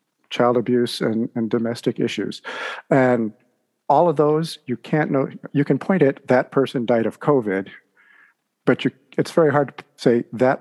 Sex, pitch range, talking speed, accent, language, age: male, 120-140 Hz, 170 wpm, American, English, 50-69